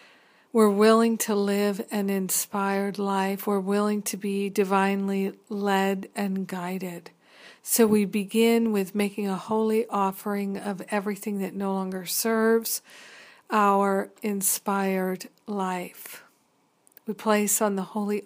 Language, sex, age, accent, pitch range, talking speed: English, female, 50-69, American, 195-215 Hz, 120 wpm